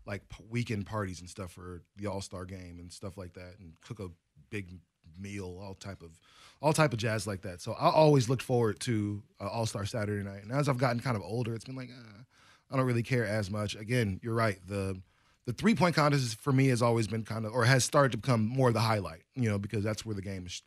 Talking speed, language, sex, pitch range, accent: 250 wpm, English, male, 105-140 Hz, American